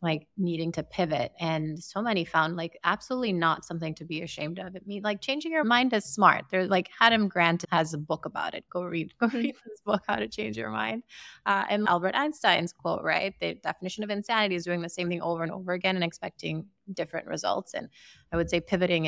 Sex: female